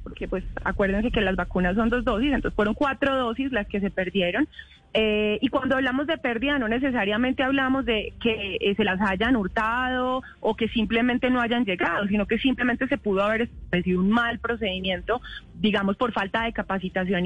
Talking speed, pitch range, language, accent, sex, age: 190 wpm, 215-270 Hz, Spanish, Colombian, female, 30-49